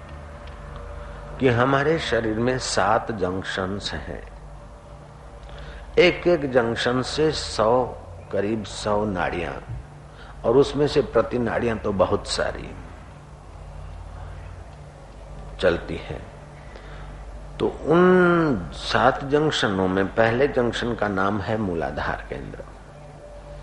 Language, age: Hindi, 50-69